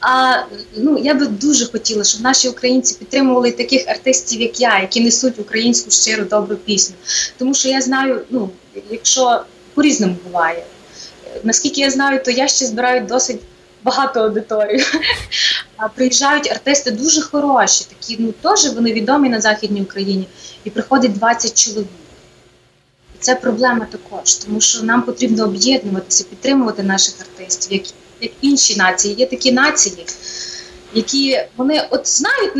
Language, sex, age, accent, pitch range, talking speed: Ukrainian, female, 20-39, native, 195-255 Hz, 135 wpm